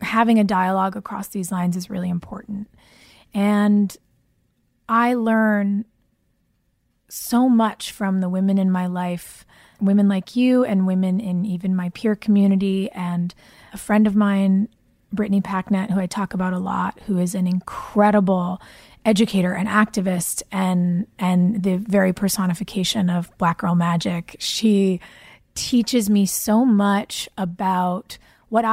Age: 20-39